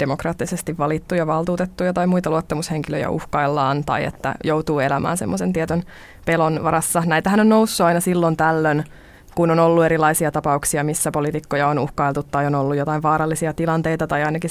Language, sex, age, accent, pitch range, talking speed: Finnish, female, 20-39, native, 150-175 Hz, 155 wpm